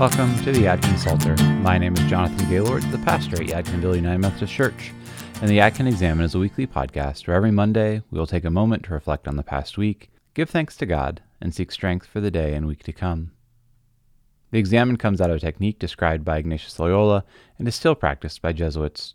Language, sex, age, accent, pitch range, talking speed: English, male, 30-49, American, 80-110 Hz, 220 wpm